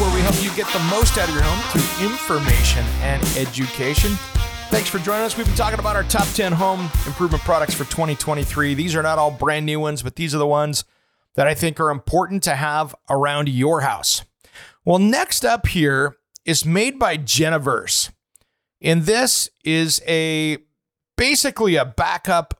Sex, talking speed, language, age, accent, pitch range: male, 180 wpm, English, 40-59, American, 145-185 Hz